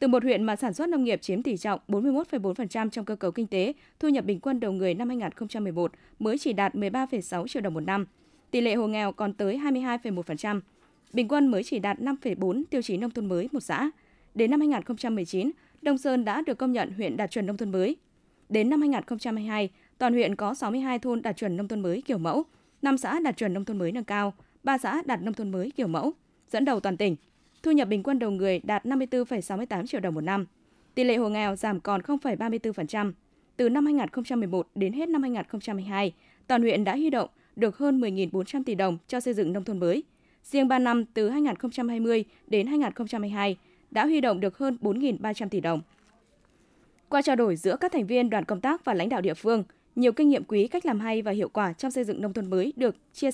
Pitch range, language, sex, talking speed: 200-265 Hz, Vietnamese, female, 220 wpm